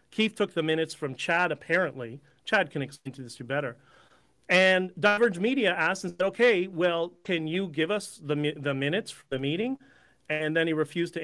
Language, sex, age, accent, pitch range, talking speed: English, male, 40-59, American, 145-195 Hz, 205 wpm